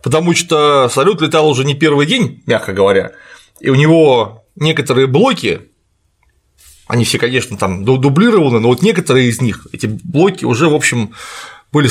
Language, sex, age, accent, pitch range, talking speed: Russian, male, 20-39, native, 115-155 Hz, 155 wpm